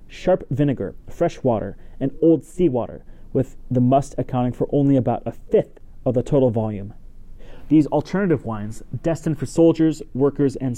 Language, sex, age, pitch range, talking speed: English, male, 30-49, 115-140 Hz, 160 wpm